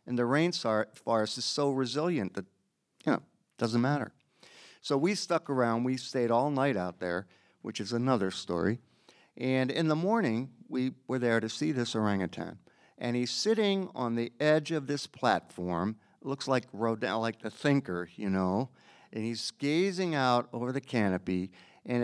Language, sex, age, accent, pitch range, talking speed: English, male, 50-69, American, 105-145 Hz, 165 wpm